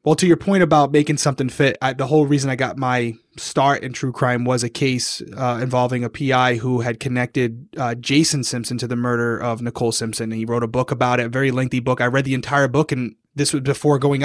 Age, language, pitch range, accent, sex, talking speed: 20-39, English, 125-160 Hz, American, male, 240 wpm